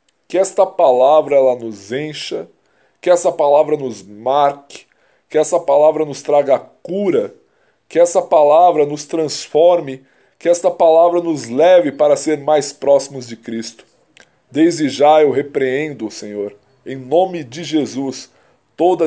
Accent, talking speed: Brazilian, 140 wpm